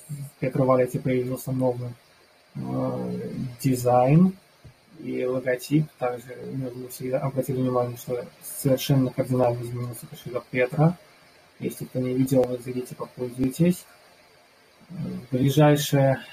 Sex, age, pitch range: male, 20-39, 90-130 Hz